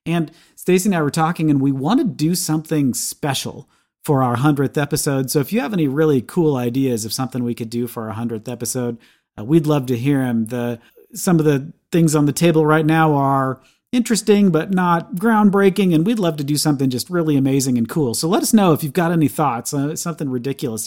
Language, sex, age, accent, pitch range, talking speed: English, male, 40-59, American, 135-165 Hz, 225 wpm